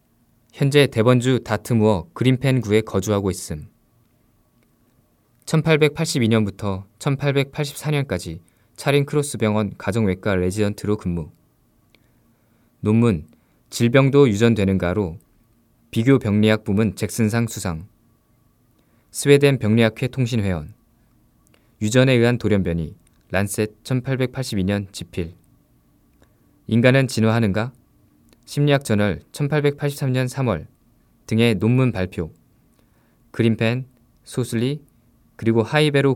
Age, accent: 20-39, native